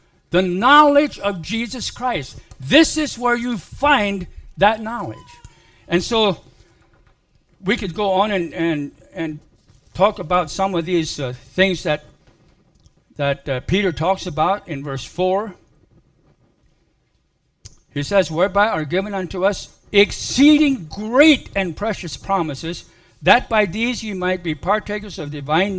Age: 60-79